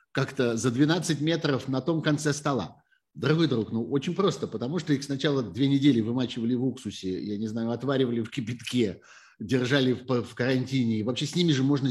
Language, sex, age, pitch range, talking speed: Russian, male, 50-69, 110-145 Hz, 190 wpm